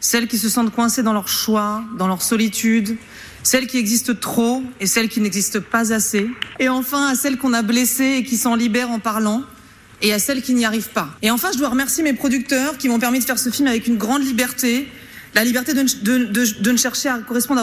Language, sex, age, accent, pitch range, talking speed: French, female, 30-49, French, 210-255 Hz, 240 wpm